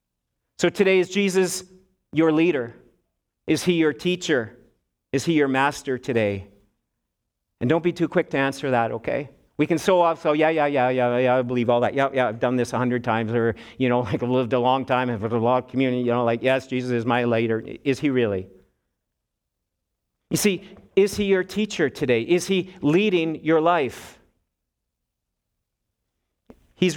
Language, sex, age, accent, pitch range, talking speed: English, male, 50-69, American, 130-185 Hz, 185 wpm